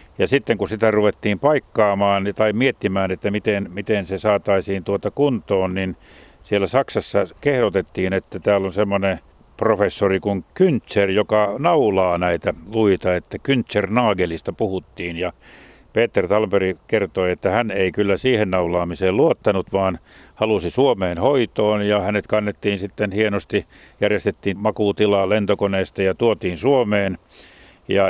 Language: Finnish